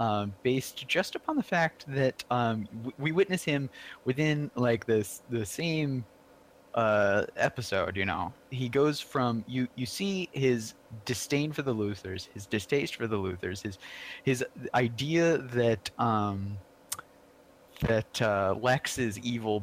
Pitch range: 105-130 Hz